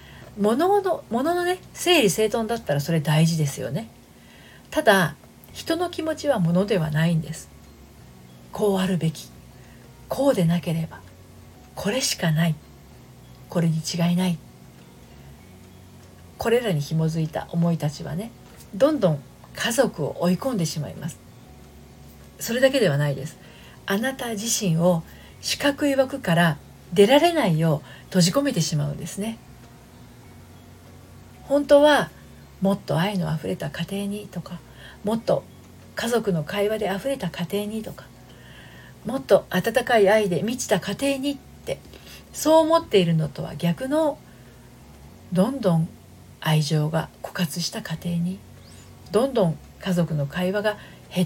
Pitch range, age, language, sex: 150-215 Hz, 40-59, Japanese, female